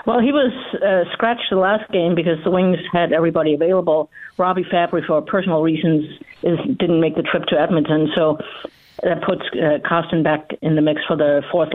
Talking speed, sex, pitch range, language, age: 195 wpm, female, 150-180 Hz, English, 50-69